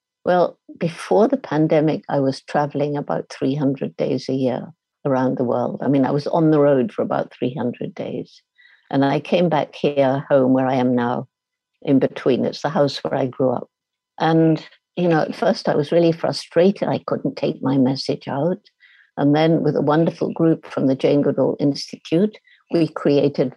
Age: 60-79